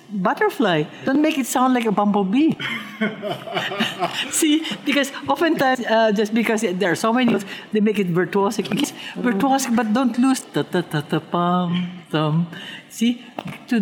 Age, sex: 60-79, female